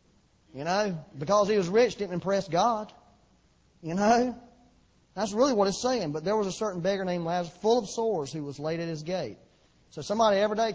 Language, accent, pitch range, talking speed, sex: English, American, 145-200 Hz, 205 wpm, male